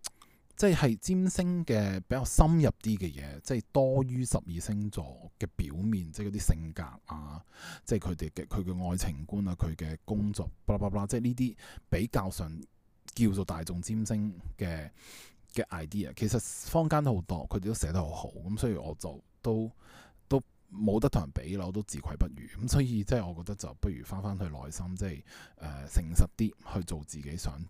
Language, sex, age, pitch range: Chinese, male, 20-39, 85-110 Hz